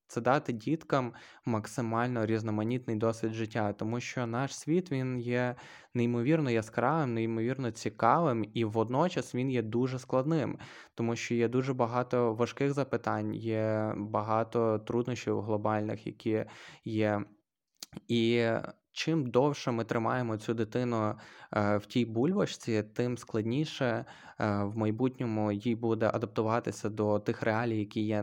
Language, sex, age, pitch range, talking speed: Ukrainian, male, 20-39, 110-125 Hz, 125 wpm